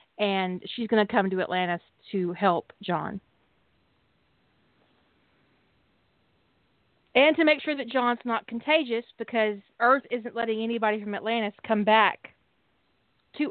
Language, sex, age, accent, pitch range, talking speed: English, female, 30-49, American, 195-235 Hz, 125 wpm